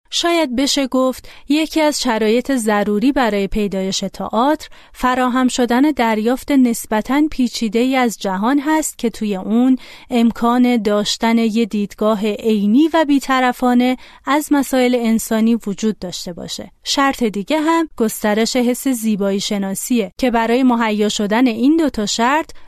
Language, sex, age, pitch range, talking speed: Persian, female, 30-49, 210-260 Hz, 130 wpm